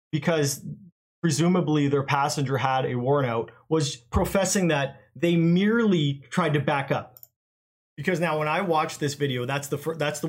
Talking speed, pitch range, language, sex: 160 wpm, 130-165 Hz, English, male